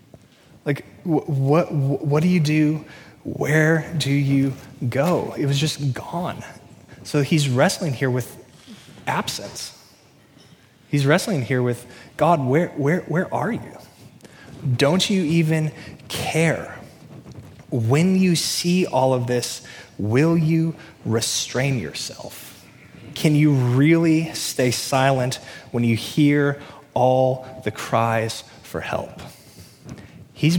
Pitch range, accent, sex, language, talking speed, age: 115-150 Hz, American, male, English, 115 wpm, 20-39